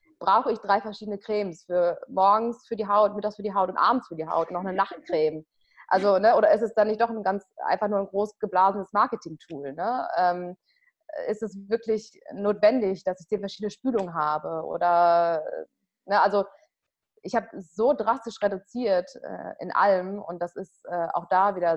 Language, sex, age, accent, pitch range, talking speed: German, female, 20-39, German, 175-215 Hz, 190 wpm